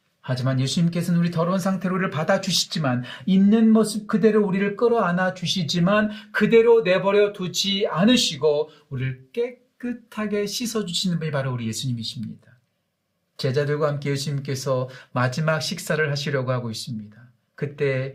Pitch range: 130-185 Hz